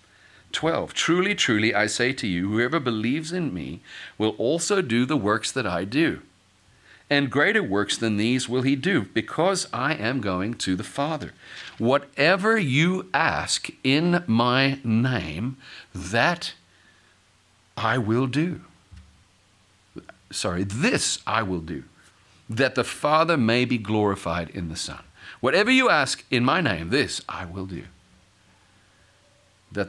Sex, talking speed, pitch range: male, 140 wpm, 90-120 Hz